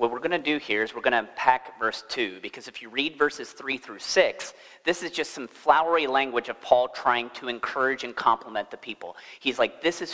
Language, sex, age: English, male, 30-49